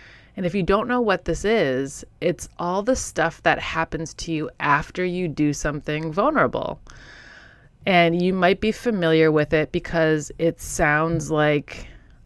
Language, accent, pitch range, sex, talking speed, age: English, American, 155-200 Hz, female, 155 wpm, 30-49